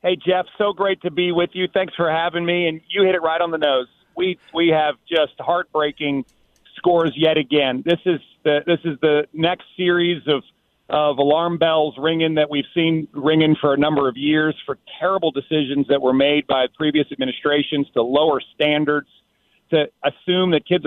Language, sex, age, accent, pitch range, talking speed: English, male, 40-59, American, 145-175 Hz, 190 wpm